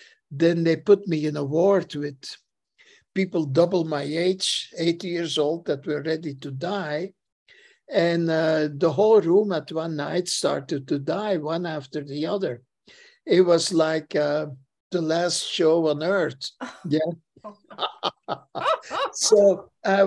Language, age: English, 60-79